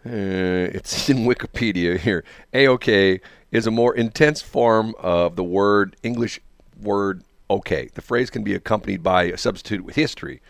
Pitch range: 95-115 Hz